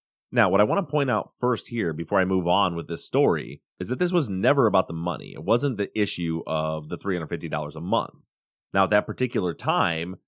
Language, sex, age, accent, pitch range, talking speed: English, male, 30-49, American, 80-105 Hz, 220 wpm